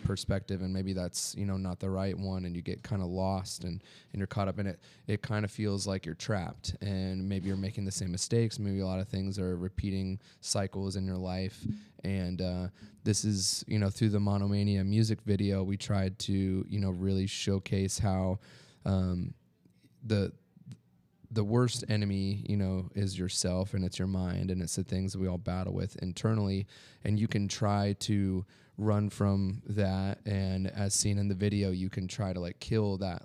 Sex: male